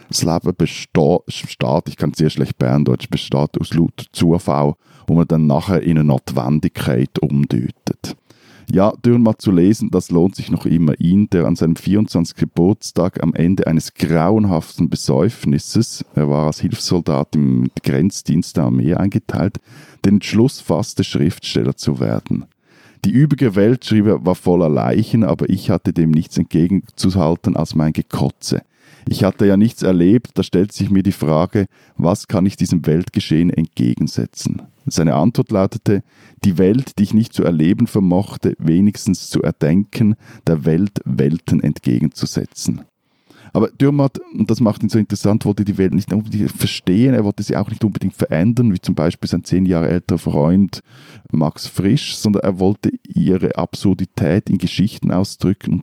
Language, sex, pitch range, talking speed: German, male, 80-105 Hz, 160 wpm